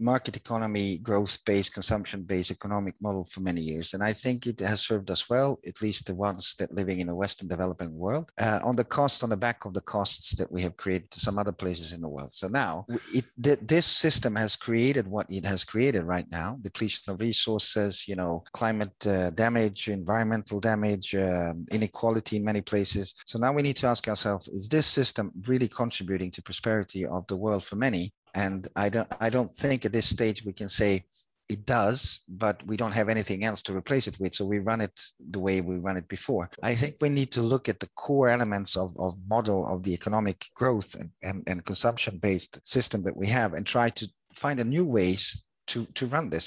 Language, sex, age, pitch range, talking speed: English, male, 30-49, 95-115 Hz, 215 wpm